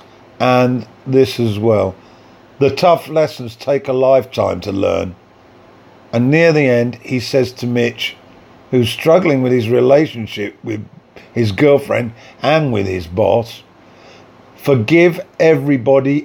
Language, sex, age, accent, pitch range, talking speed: English, male, 50-69, British, 115-140 Hz, 125 wpm